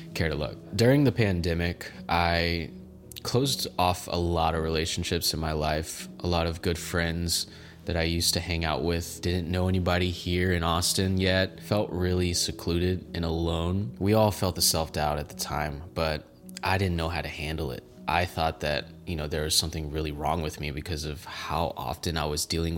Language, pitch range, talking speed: English, 80-90 Hz, 200 wpm